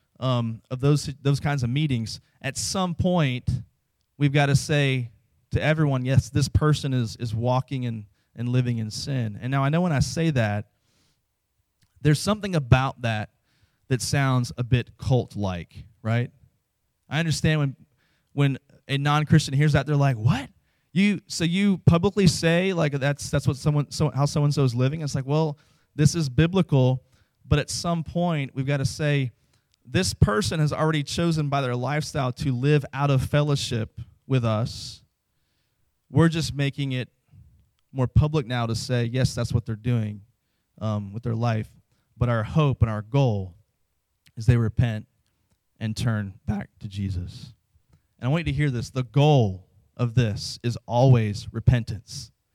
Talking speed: 165 wpm